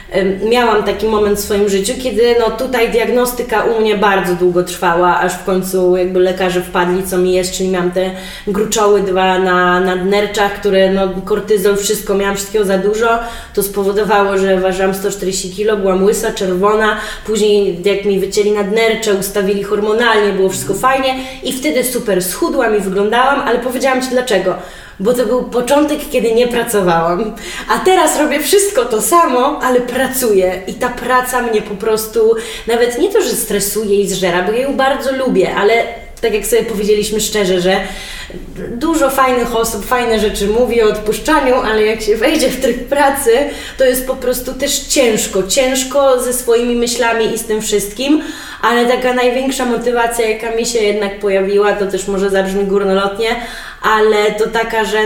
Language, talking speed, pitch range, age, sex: Polish, 170 wpm, 200-240 Hz, 20-39, female